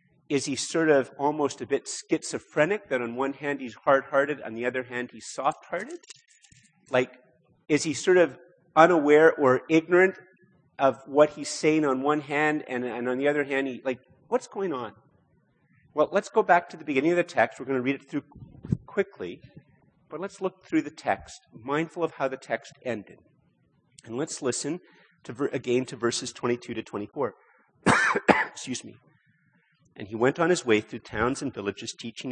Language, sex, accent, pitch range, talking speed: English, male, American, 120-155 Hz, 180 wpm